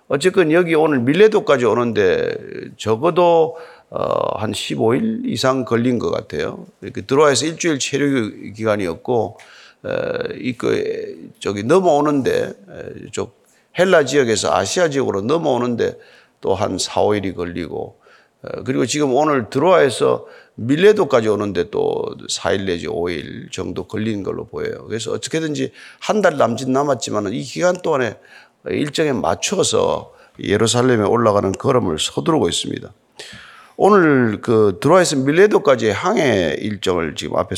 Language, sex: Korean, male